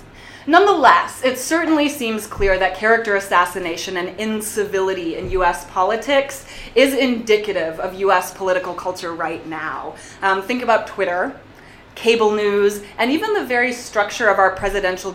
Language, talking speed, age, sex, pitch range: English, 140 wpm, 20-39, female, 190-240 Hz